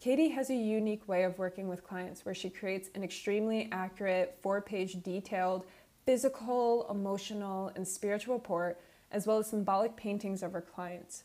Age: 20-39